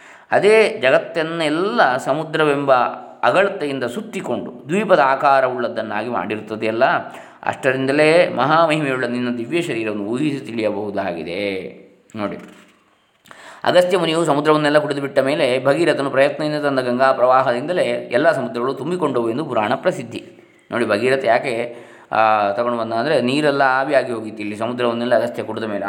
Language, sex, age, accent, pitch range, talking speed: Kannada, male, 20-39, native, 120-150 Hz, 105 wpm